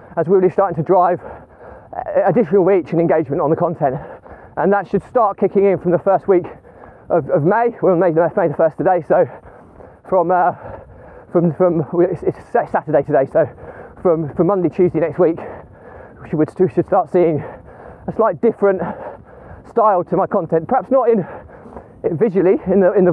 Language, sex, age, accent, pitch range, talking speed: English, male, 20-39, British, 170-205 Hz, 185 wpm